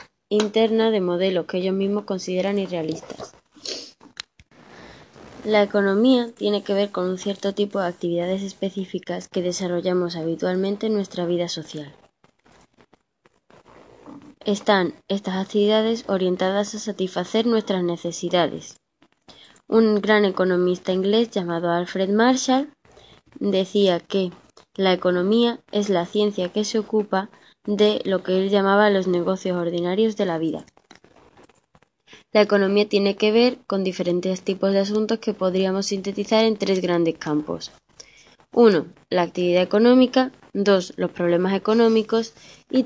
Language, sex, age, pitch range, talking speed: Spanish, female, 20-39, 180-215 Hz, 125 wpm